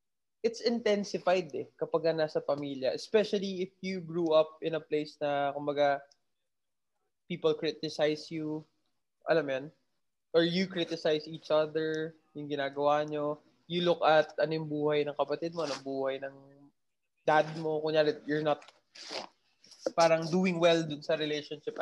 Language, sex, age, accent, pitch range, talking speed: English, male, 20-39, Filipino, 150-180 Hz, 140 wpm